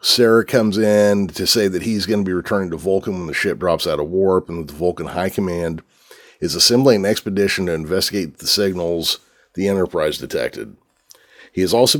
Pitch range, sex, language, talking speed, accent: 90-115 Hz, male, English, 200 wpm, American